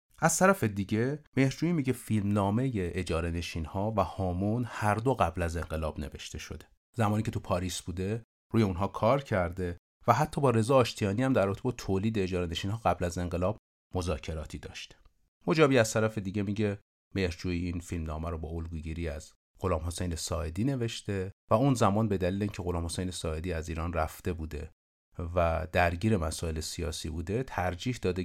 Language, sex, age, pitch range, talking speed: Persian, male, 30-49, 85-110 Hz, 175 wpm